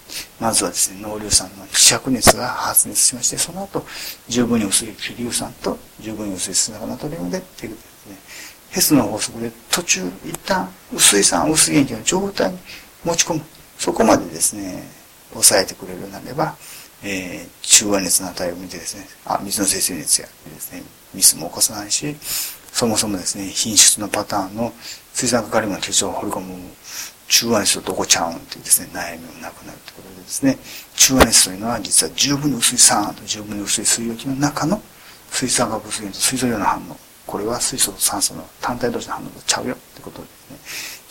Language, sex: Japanese, male